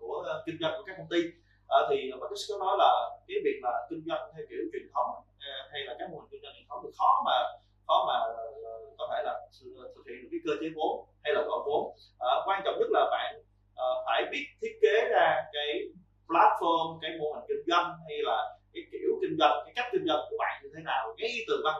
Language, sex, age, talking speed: Vietnamese, male, 20-39, 240 wpm